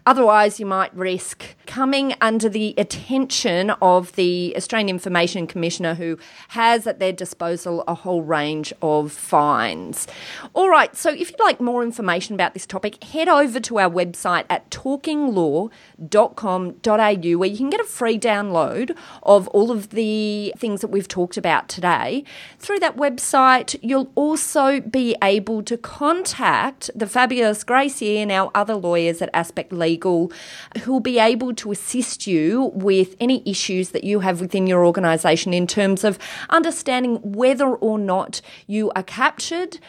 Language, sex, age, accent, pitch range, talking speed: English, female, 30-49, Australian, 180-245 Hz, 155 wpm